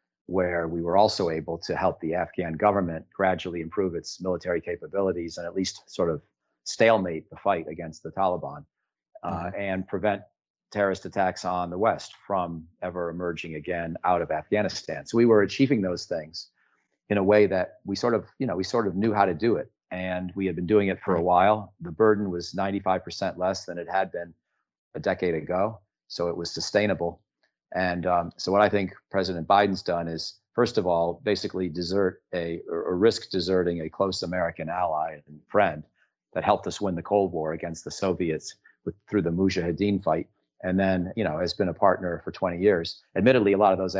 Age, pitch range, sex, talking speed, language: 40-59, 85-100 Hz, male, 200 wpm, English